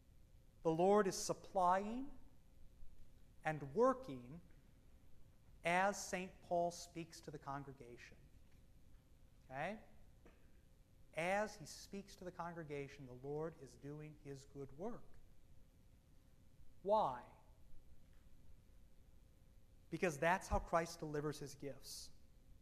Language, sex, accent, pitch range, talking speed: English, male, American, 140-185 Hz, 90 wpm